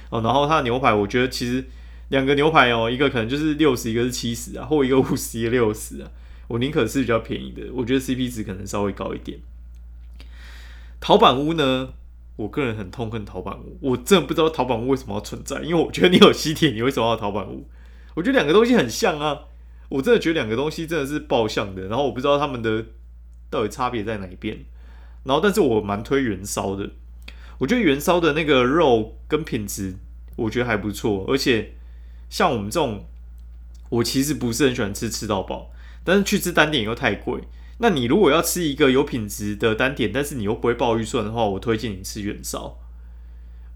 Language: Chinese